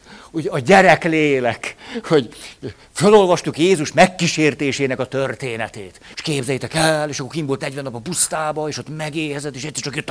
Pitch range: 135-185 Hz